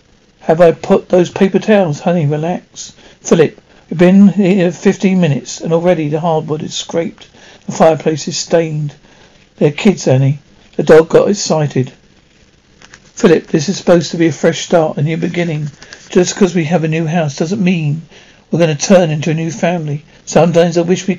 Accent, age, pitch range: British, 50-69, 155-190 Hz